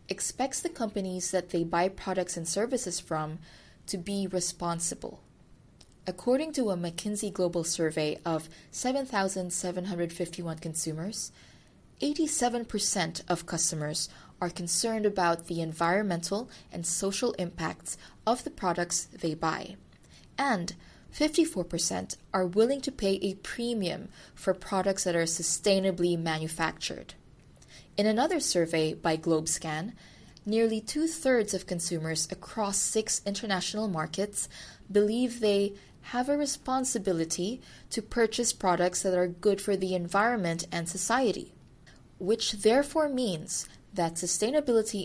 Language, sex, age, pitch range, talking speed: English, female, 20-39, 170-220 Hz, 115 wpm